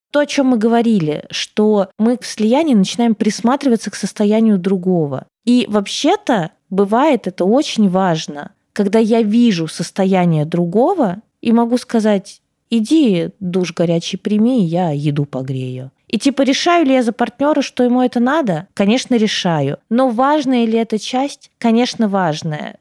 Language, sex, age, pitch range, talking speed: Russian, female, 20-39, 195-250 Hz, 145 wpm